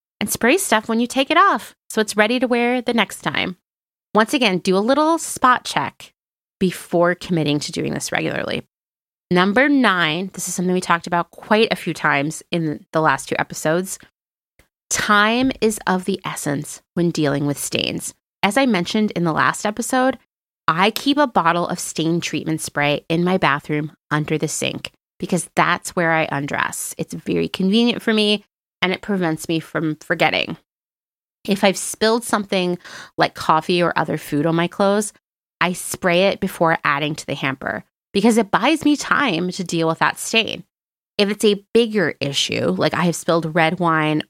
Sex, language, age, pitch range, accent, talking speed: female, English, 30-49, 160-215 Hz, American, 180 wpm